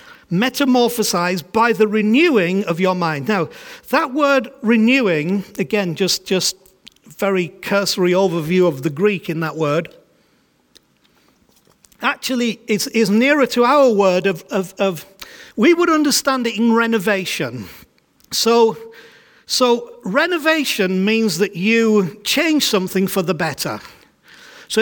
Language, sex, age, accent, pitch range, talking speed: English, male, 50-69, British, 195-260 Hz, 125 wpm